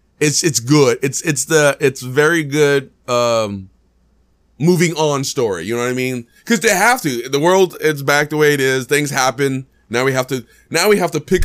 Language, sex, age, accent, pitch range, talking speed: English, male, 20-39, American, 130-170 Hz, 215 wpm